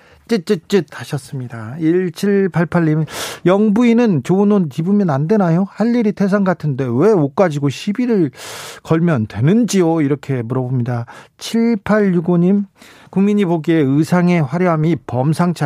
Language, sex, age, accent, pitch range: Korean, male, 40-59, native, 145-200 Hz